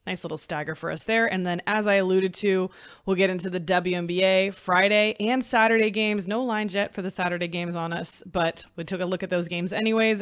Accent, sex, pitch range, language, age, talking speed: American, female, 180-215 Hz, English, 20-39, 230 wpm